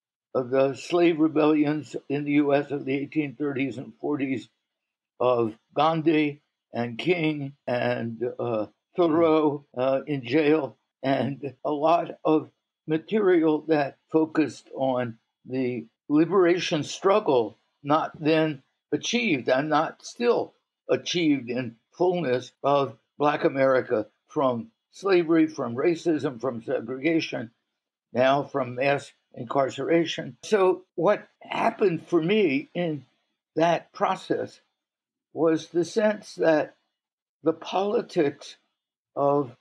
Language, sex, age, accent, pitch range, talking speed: English, male, 60-79, American, 130-165 Hz, 105 wpm